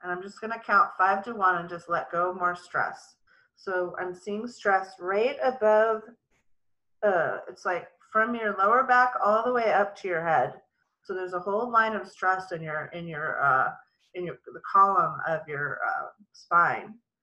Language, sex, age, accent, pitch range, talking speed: English, female, 30-49, American, 180-235 Hz, 190 wpm